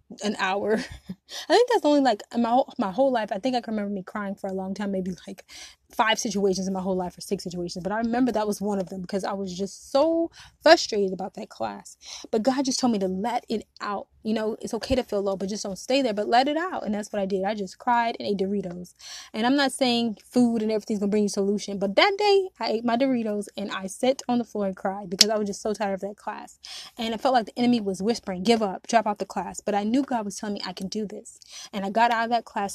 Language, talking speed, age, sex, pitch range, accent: English, 280 wpm, 20-39, female, 195-240 Hz, American